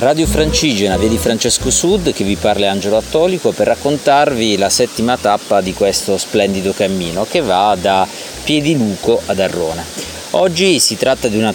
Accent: native